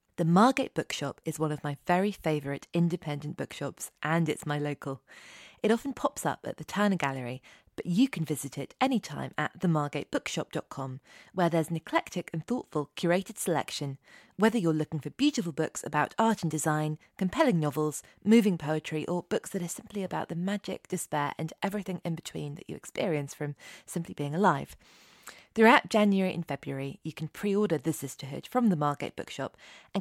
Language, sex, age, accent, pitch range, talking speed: English, female, 20-39, British, 150-190 Hz, 175 wpm